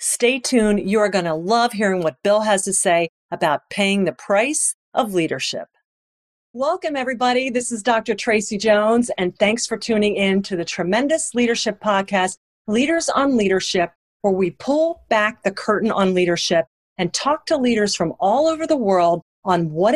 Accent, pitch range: American, 185-250 Hz